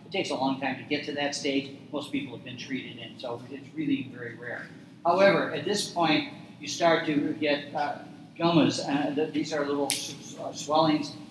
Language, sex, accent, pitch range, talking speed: English, male, American, 135-155 Hz, 205 wpm